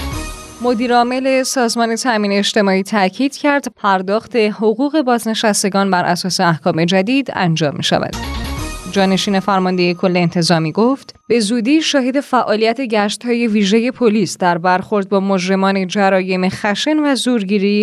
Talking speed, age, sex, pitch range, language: 120 wpm, 20-39, female, 175-220 Hz, Persian